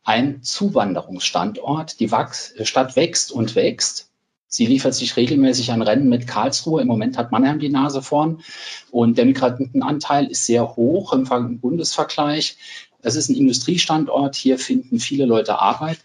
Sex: male